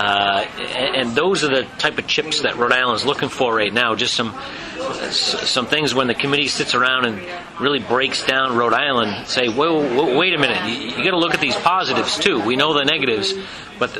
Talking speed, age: 220 wpm, 40-59